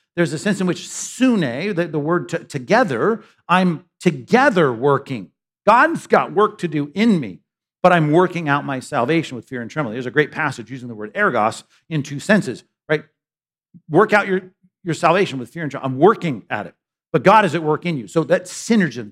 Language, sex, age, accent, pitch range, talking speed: English, male, 50-69, American, 130-185 Hz, 205 wpm